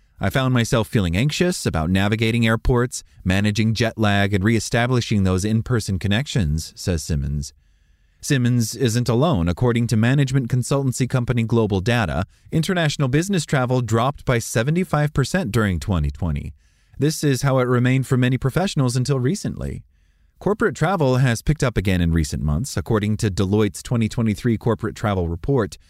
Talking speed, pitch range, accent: 145 wpm, 95-135 Hz, American